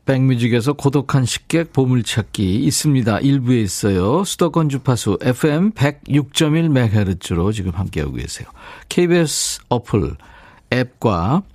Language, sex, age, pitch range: Korean, male, 50-69, 105-150 Hz